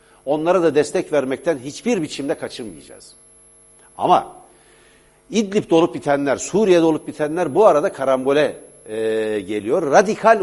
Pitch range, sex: 140-210 Hz, male